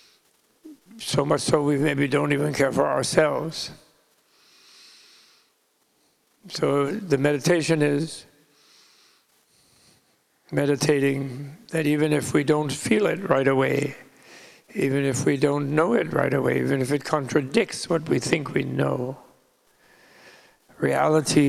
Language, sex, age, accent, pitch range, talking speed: English, male, 60-79, American, 135-155 Hz, 115 wpm